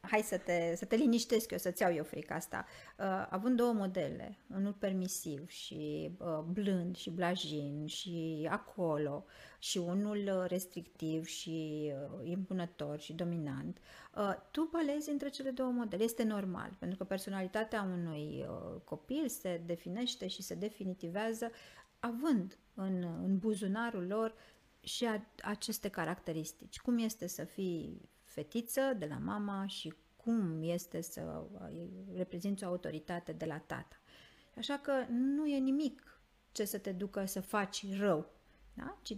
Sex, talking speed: female, 140 wpm